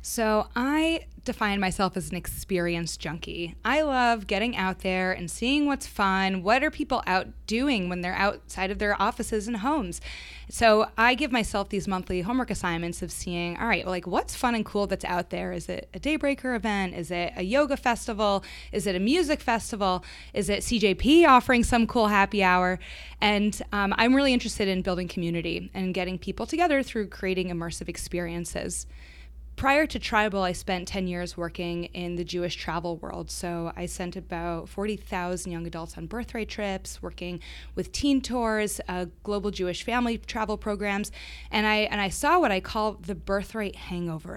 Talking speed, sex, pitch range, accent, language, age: 180 wpm, female, 180-225 Hz, American, English, 20-39